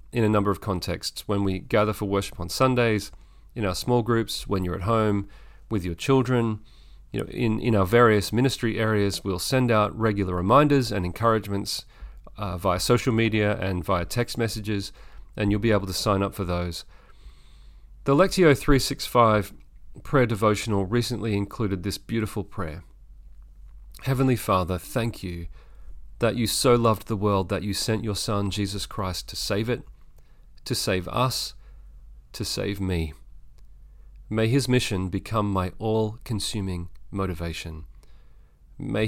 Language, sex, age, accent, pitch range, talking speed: English, male, 40-59, Australian, 90-115 Hz, 150 wpm